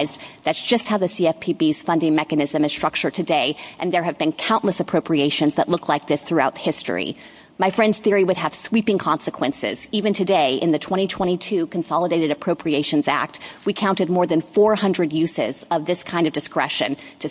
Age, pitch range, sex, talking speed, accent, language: 30-49, 165-210 Hz, female, 170 wpm, American, English